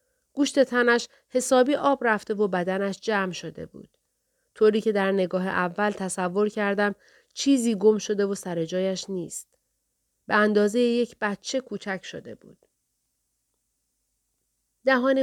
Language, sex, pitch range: Persian, female, 190-240 Hz